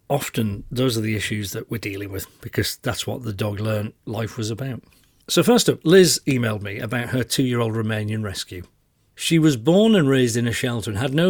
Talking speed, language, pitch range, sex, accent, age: 205 wpm, English, 105-135 Hz, male, British, 40-59